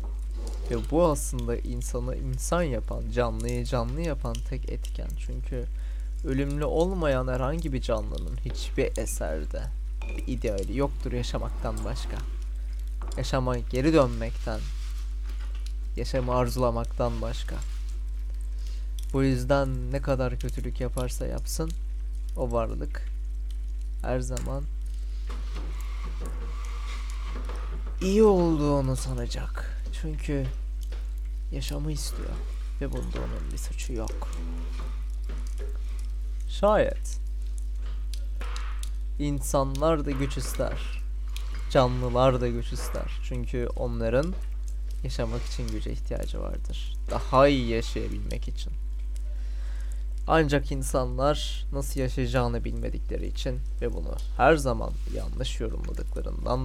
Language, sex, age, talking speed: Turkish, male, 20-39, 90 wpm